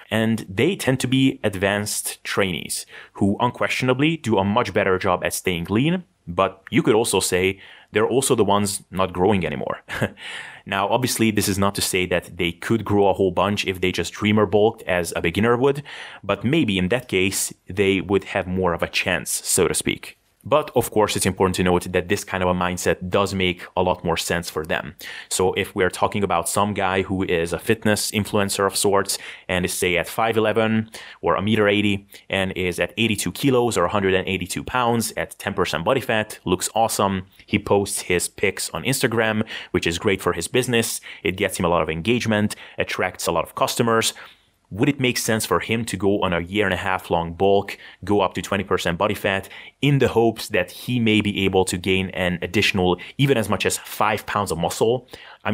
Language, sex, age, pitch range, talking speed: English, male, 30-49, 95-115 Hz, 205 wpm